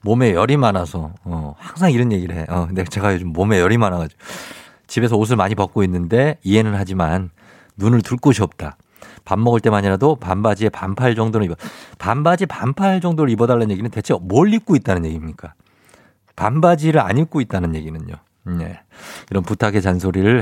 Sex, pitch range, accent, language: male, 95-125 Hz, native, Korean